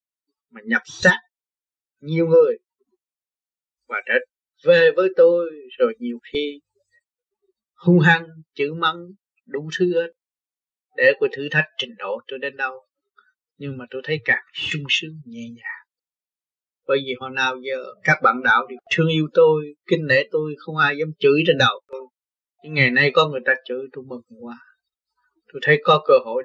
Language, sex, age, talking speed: Vietnamese, male, 20-39, 170 wpm